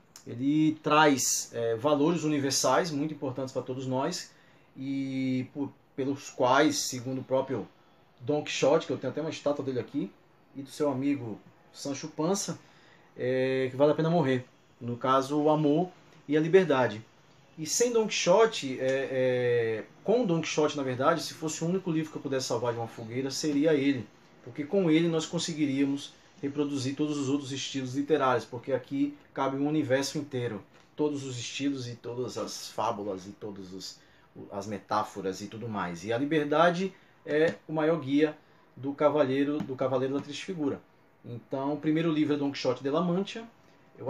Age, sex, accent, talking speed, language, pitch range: 20-39, male, Brazilian, 165 wpm, Portuguese, 130-155 Hz